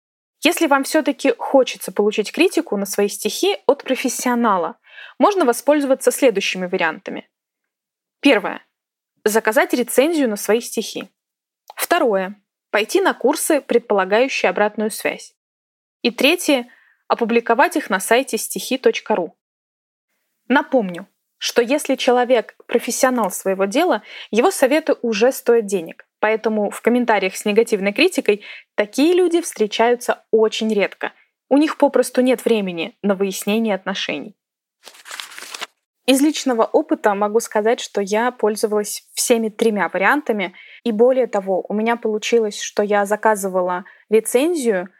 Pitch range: 210-260 Hz